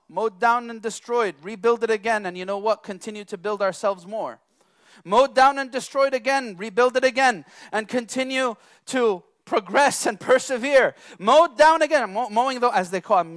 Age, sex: 30-49, male